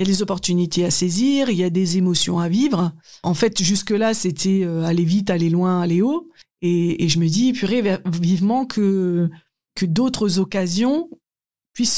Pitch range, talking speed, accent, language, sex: 165-200 Hz, 180 wpm, French, French, female